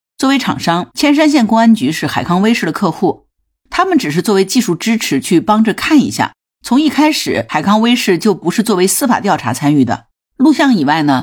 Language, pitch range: Chinese, 150-225 Hz